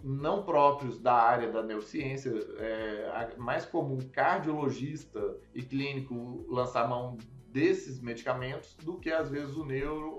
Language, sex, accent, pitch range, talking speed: Portuguese, male, Brazilian, 120-160 Hz, 130 wpm